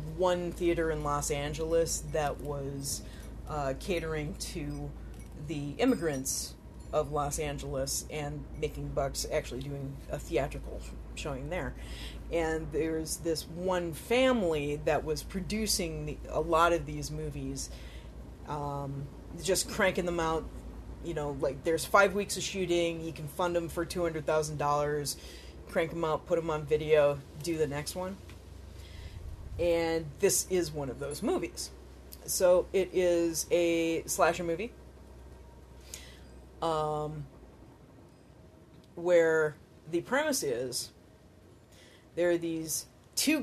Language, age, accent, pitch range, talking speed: English, 30-49, American, 140-170 Hz, 125 wpm